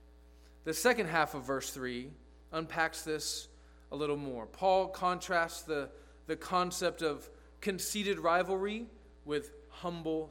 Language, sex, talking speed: English, male, 120 wpm